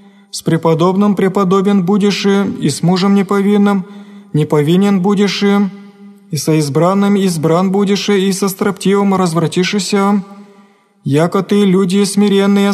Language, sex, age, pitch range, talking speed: Greek, male, 20-39, 190-200 Hz, 110 wpm